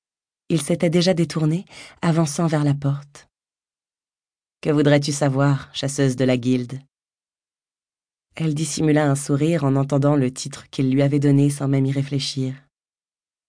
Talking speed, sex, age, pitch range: 140 wpm, female, 30-49, 145-165 Hz